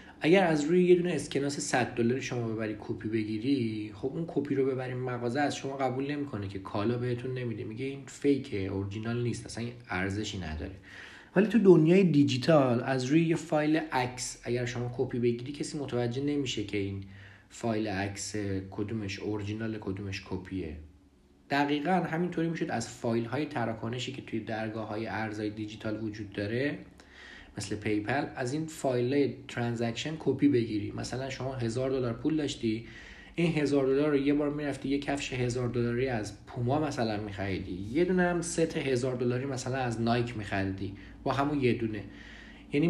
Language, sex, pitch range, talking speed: Persian, male, 110-145 Hz, 160 wpm